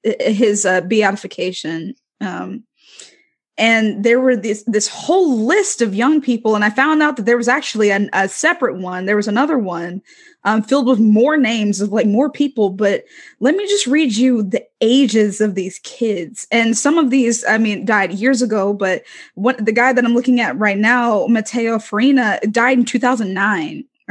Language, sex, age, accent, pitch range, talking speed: English, female, 20-39, American, 215-265 Hz, 185 wpm